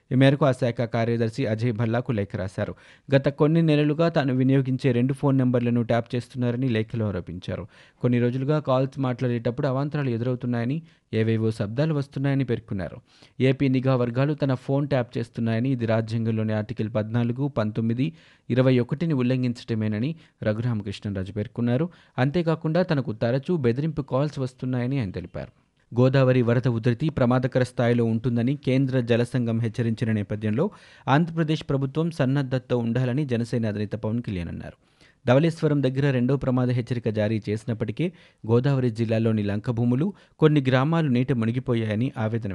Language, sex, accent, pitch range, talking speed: Telugu, male, native, 115-140 Hz, 125 wpm